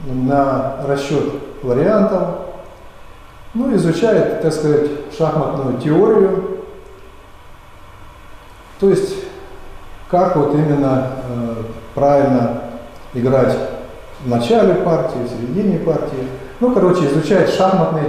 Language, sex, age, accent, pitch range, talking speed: Russian, male, 40-59, native, 125-170 Hz, 90 wpm